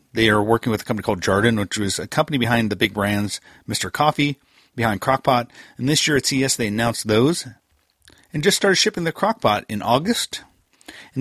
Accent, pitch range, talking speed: American, 105-140 Hz, 200 wpm